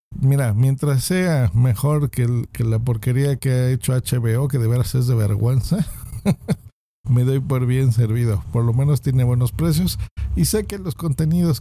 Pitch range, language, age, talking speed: 115-145 Hz, Spanish, 50-69, 180 wpm